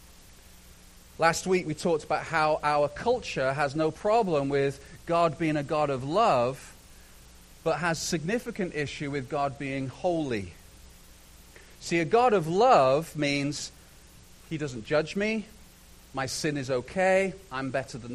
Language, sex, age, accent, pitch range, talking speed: English, male, 40-59, British, 140-200 Hz, 140 wpm